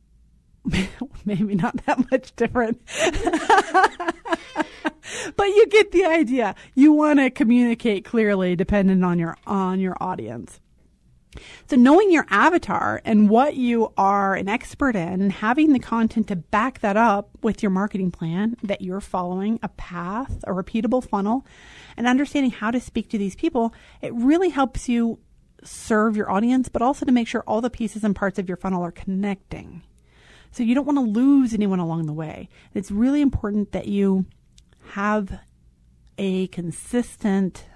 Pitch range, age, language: 180-245 Hz, 30-49, English